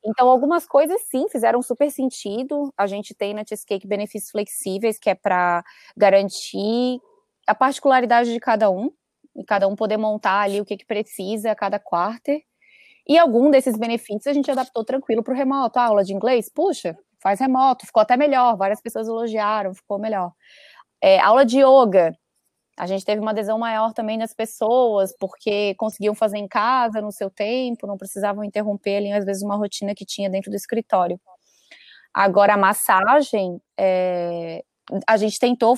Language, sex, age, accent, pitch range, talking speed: Portuguese, female, 20-39, Brazilian, 200-240 Hz, 175 wpm